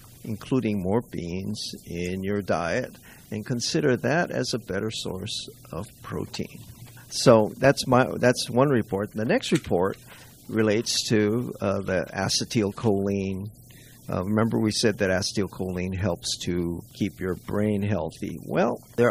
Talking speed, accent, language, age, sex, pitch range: 135 wpm, American, English, 50-69, male, 100-125 Hz